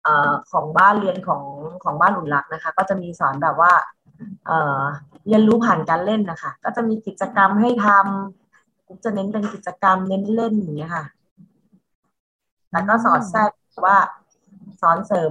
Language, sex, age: Thai, female, 20-39